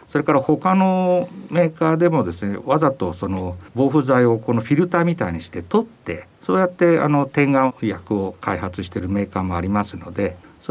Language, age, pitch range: Japanese, 50-69, 95-155 Hz